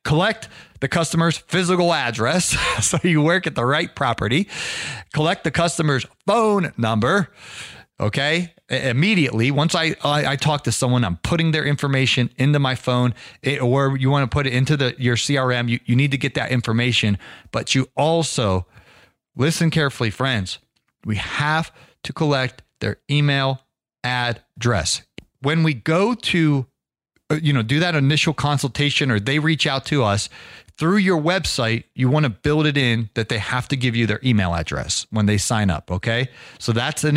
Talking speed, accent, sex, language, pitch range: 170 wpm, American, male, English, 120-155 Hz